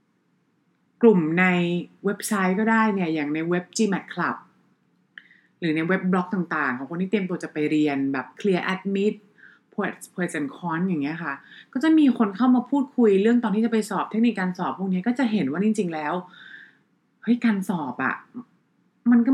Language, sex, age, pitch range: English, female, 30-49, 165-225 Hz